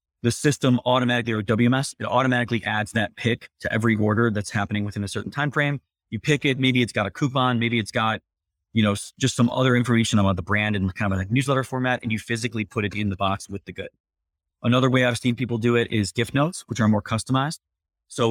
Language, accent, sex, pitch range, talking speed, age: English, American, male, 100-125 Hz, 235 wpm, 30-49